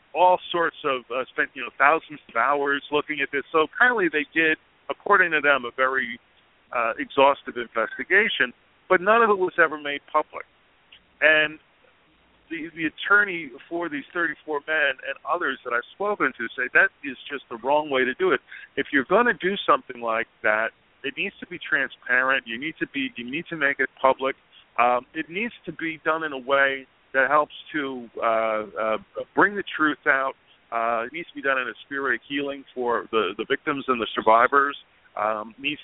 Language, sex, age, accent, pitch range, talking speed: English, male, 50-69, American, 125-160 Hz, 200 wpm